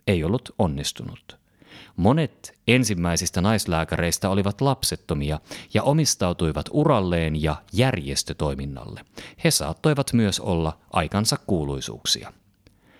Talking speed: 90 wpm